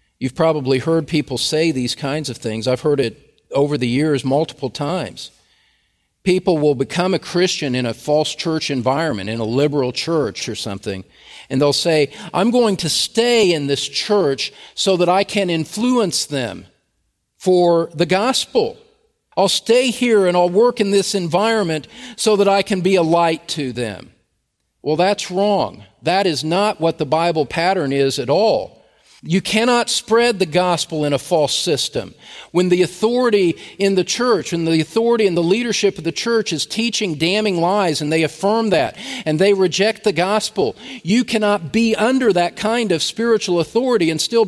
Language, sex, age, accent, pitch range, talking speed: English, male, 50-69, American, 150-210 Hz, 175 wpm